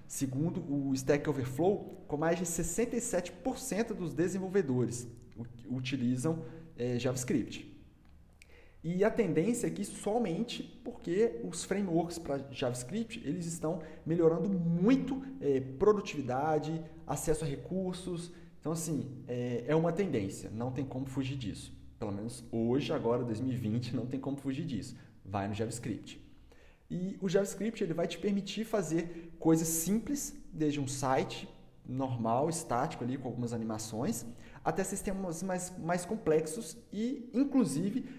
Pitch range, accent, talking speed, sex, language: 120-175 Hz, Brazilian, 125 wpm, male, Portuguese